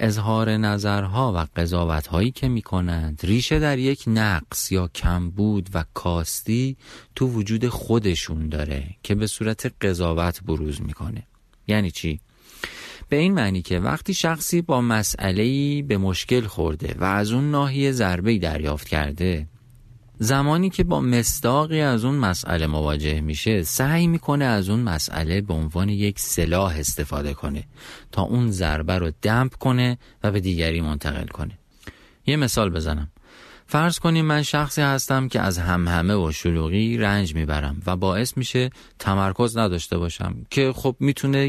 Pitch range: 85-130 Hz